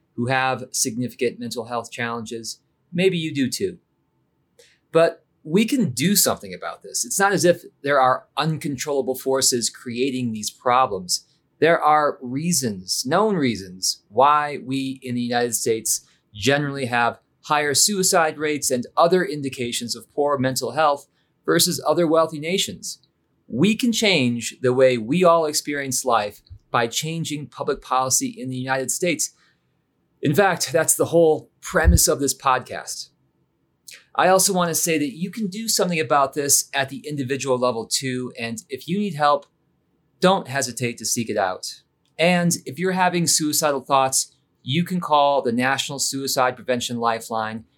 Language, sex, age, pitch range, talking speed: English, male, 40-59, 120-165 Hz, 155 wpm